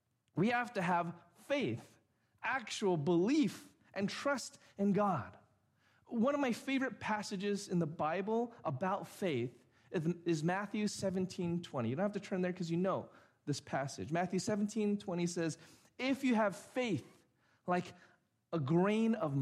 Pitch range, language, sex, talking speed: 150-230 Hz, English, male, 150 wpm